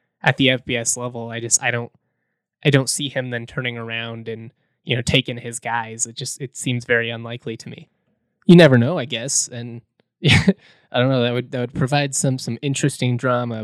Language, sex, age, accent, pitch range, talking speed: English, male, 20-39, American, 115-135 Hz, 210 wpm